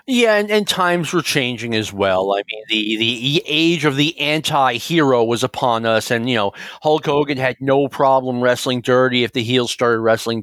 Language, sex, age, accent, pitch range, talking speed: English, male, 40-59, American, 130-180 Hz, 195 wpm